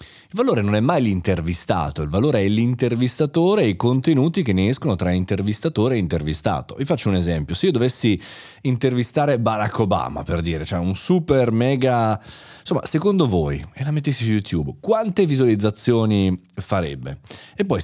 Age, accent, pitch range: 30-49, native, 95-130 Hz